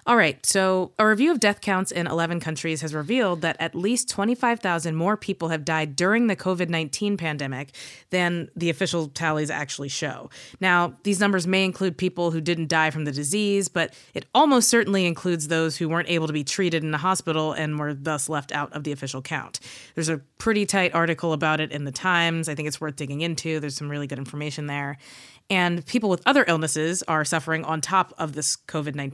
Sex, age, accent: female, 20-39, American